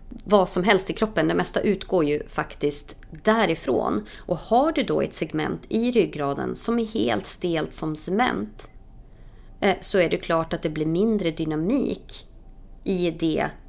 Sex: female